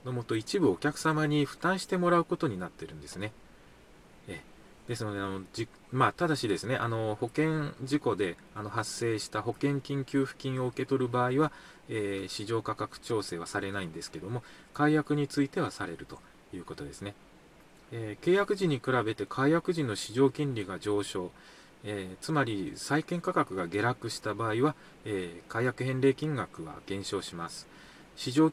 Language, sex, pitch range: Japanese, male, 105-150 Hz